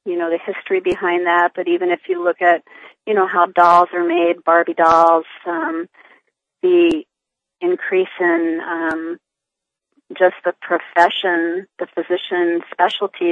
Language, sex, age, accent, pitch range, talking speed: English, female, 40-59, American, 175-210 Hz, 130 wpm